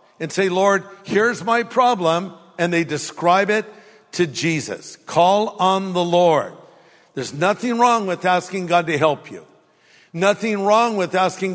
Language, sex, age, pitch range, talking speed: English, male, 60-79, 155-195 Hz, 150 wpm